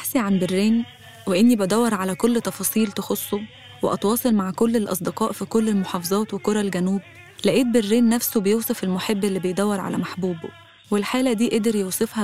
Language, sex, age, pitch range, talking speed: Arabic, female, 20-39, 190-220 Hz, 150 wpm